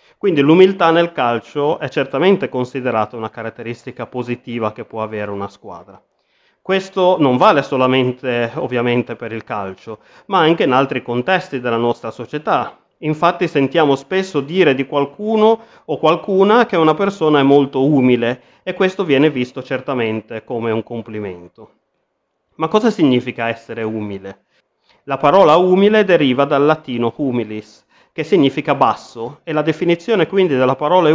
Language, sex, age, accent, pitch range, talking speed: Italian, male, 30-49, native, 115-160 Hz, 145 wpm